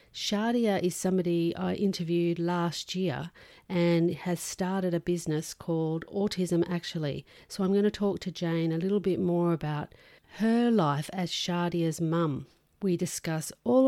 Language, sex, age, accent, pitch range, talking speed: English, female, 40-59, Australian, 170-200 Hz, 150 wpm